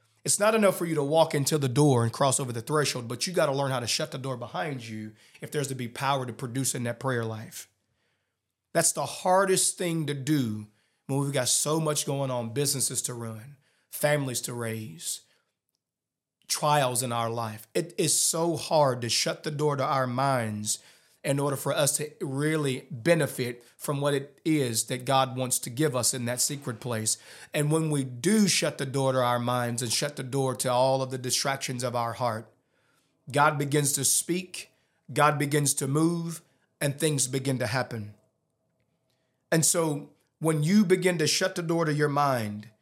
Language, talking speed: English, 195 wpm